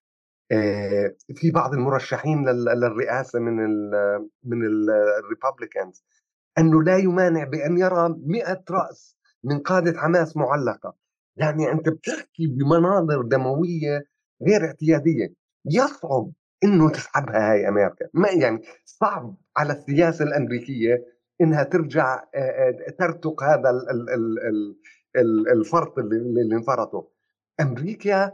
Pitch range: 125-170 Hz